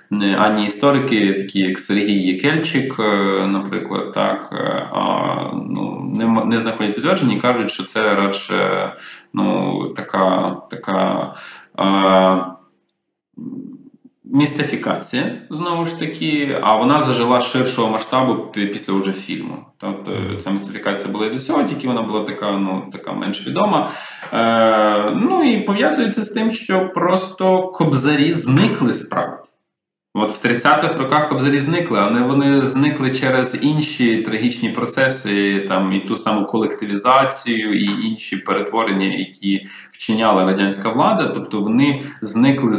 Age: 20-39